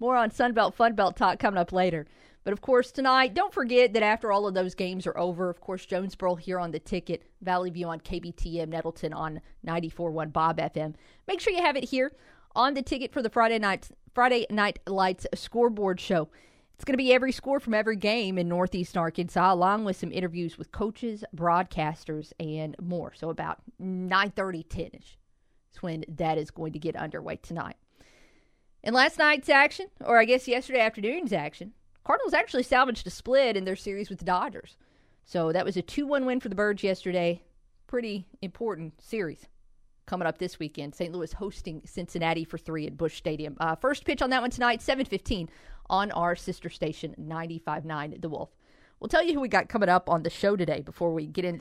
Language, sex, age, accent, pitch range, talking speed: English, female, 40-59, American, 165-230 Hz, 200 wpm